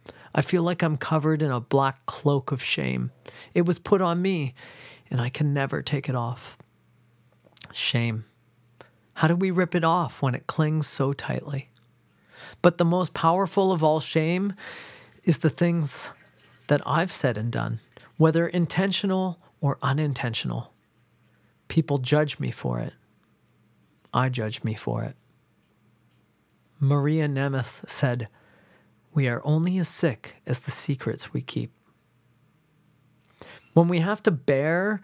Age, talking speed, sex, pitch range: 40-59, 140 wpm, male, 125-160 Hz